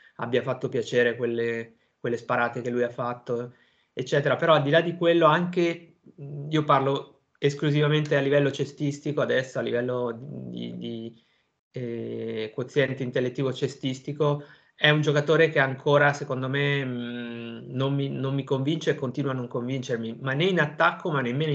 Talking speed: 160 wpm